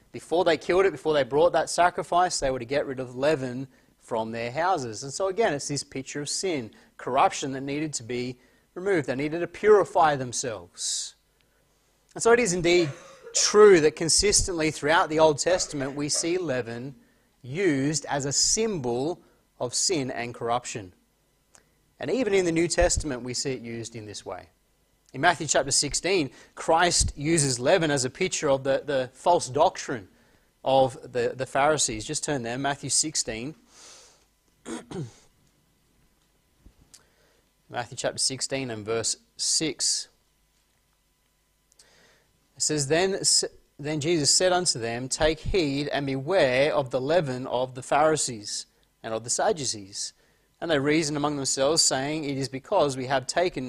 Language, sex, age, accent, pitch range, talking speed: English, male, 30-49, Australian, 130-170 Hz, 155 wpm